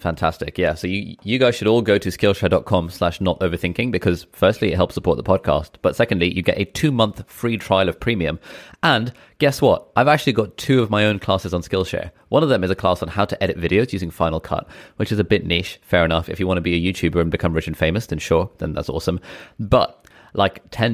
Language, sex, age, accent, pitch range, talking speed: English, male, 20-39, British, 85-100 Hz, 245 wpm